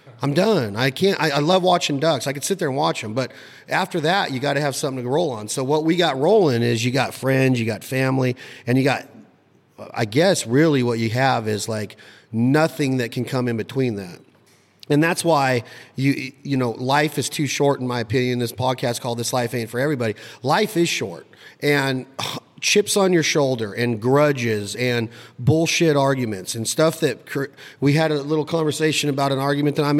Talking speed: 210 wpm